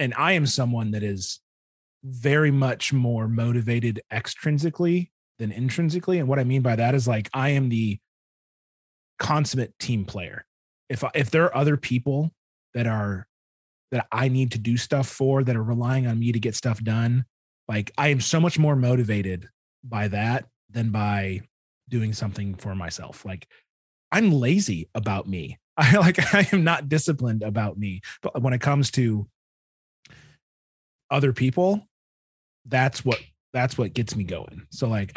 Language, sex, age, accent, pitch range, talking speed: English, male, 30-49, American, 105-135 Hz, 160 wpm